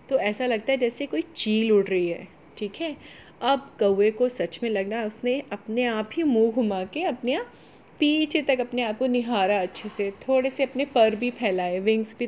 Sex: female